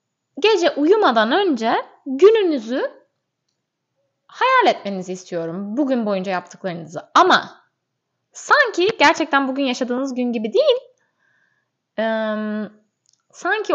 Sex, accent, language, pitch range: female, native, Turkish, 190-270 Hz